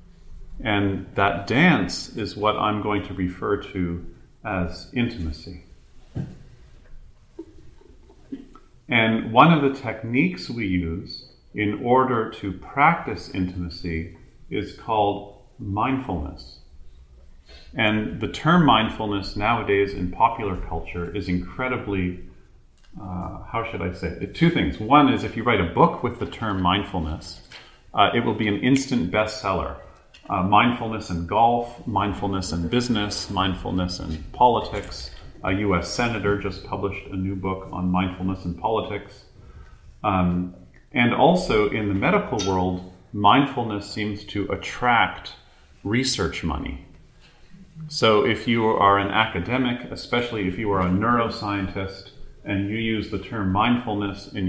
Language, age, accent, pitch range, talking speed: English, 40-59, American, 90-110 Hz, 130 wpm